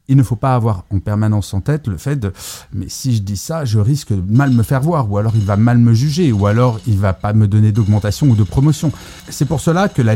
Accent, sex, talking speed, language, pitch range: French, male, 285 wpm, French, 100-135 Hz